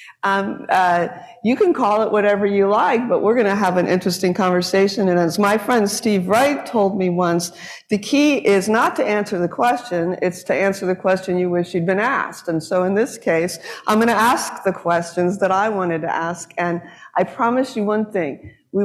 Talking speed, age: 215 wpm, 50-69